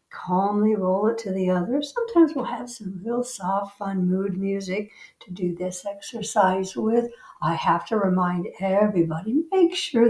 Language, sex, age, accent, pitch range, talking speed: English, female, 60-79, American, 185-235 Hz, 160 wpm